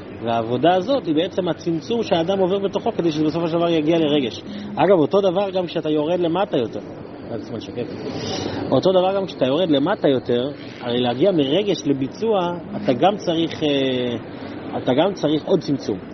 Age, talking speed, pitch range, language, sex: 30-49, 155 wpm, 145-205 Hz, Hebrew, male